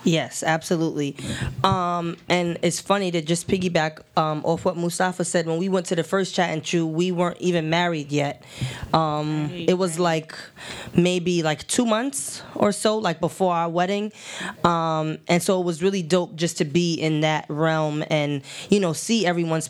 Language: English